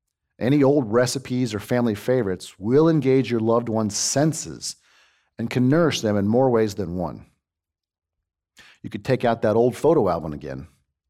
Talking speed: 160 wpm